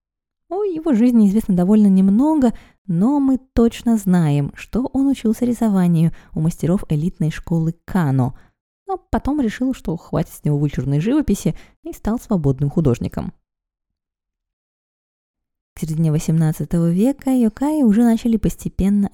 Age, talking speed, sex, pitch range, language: 20-39, 125 wpm, female, 155-230 Hz, Russian